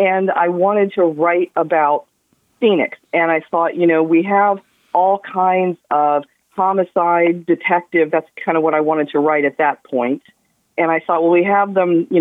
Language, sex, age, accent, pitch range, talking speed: English, female, 50-69, American, 160-195 Hz, 185 wpm